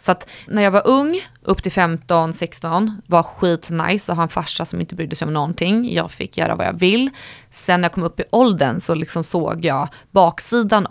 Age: 20-39